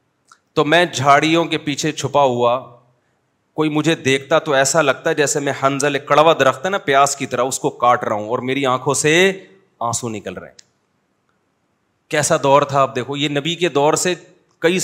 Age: 30-49